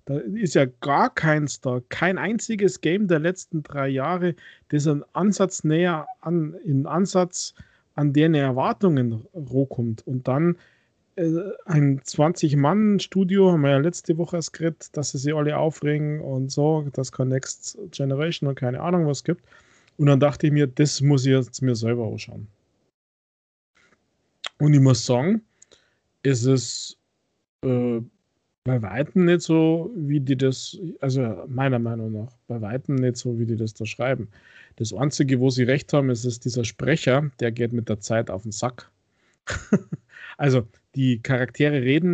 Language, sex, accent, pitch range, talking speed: German, male, German, 125-155 Hz, 160 wpm